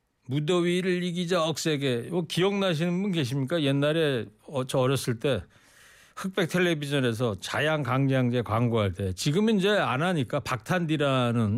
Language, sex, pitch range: Korean, male, 125-165 Hz